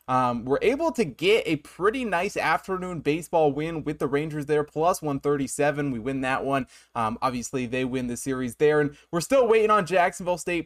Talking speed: 195 wpm